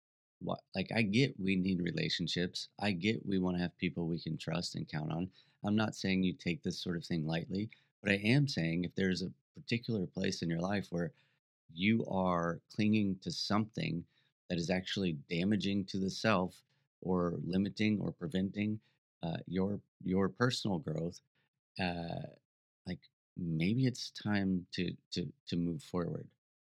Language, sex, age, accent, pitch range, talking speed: English, male, 30-49, American, 85-105 Hz, 170 wpm